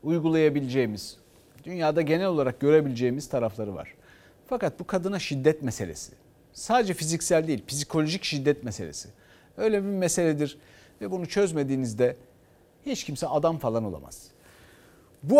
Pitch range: 125-205 Hz